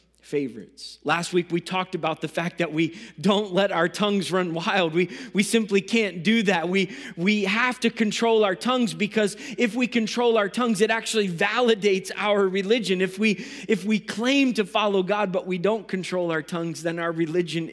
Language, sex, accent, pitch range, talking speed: English, male, American, 165-210 Hz, 195 wpm